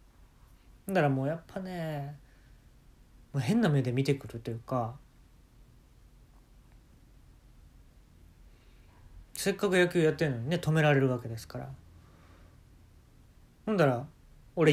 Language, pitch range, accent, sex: Japanese, 115-175 Hz, native, male